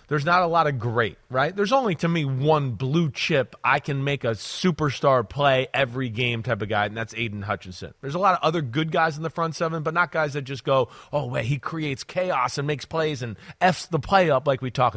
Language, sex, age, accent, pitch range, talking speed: English, male, 30-49, American, 130-165 Hz, 250 wpm